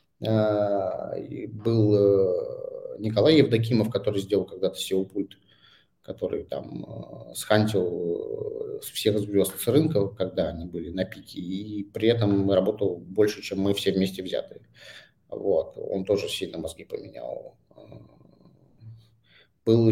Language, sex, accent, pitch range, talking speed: Russian, male, native, 100-130 Hz, 110 wpm